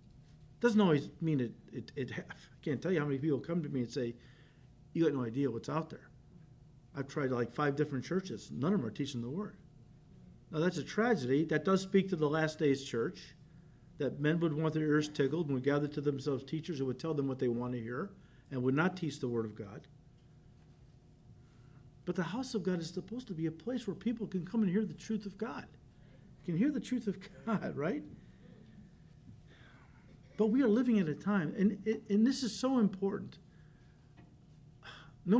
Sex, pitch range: male, 135-185 Hz